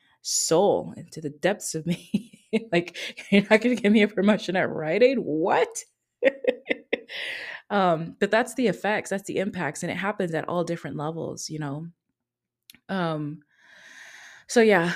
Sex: female